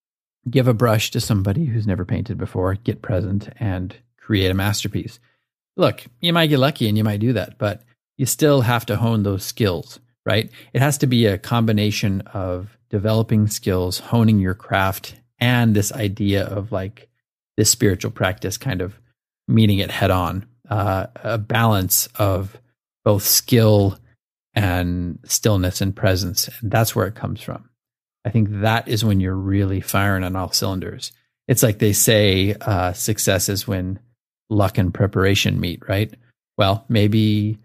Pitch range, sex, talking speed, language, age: 100-120 Hz, male, 160 wpm, English, 30-49